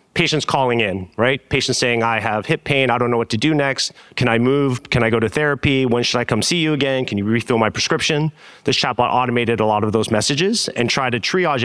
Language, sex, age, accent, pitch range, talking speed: English, male, 30-49, American, 115-135 Hz, 250 wpm